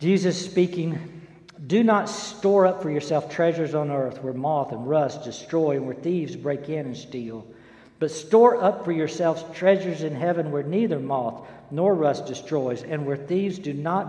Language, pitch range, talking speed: English, 145-195 Hz, 180 wpm